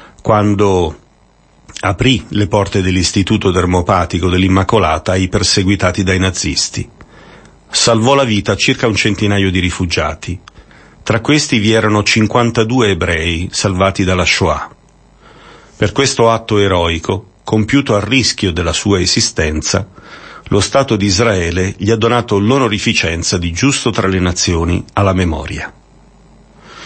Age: 40-59